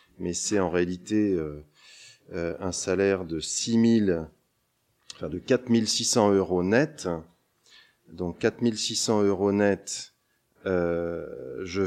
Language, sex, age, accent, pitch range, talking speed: French, male, 30-49, French, 95-120 Hz, 120 wpm